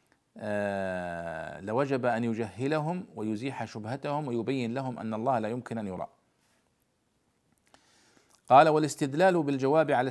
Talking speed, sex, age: 105 wpm, male, 40-59